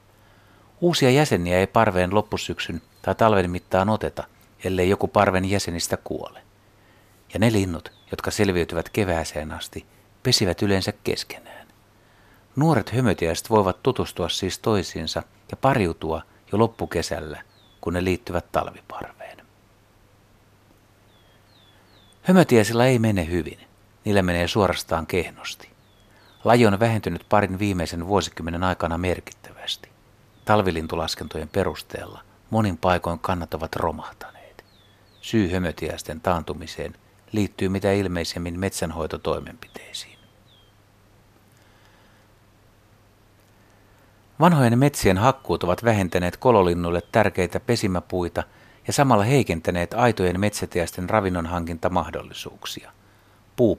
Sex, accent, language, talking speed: male, native, Finnish, 95 wpm